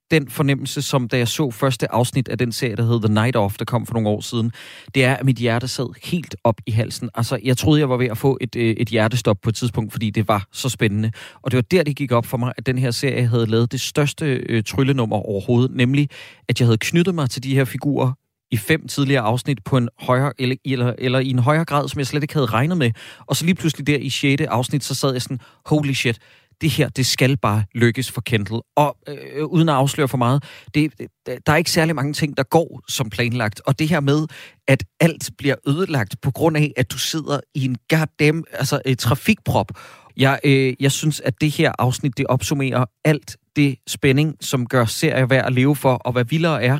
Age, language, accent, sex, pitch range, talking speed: 30-49, Danish, native, male, 120-145 Hz, 235 wpm